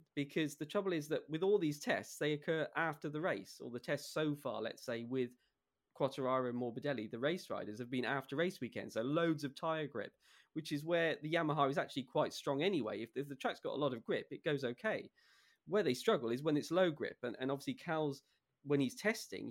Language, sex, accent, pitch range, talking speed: English, male, British, 135-170 Hz, 230 wpm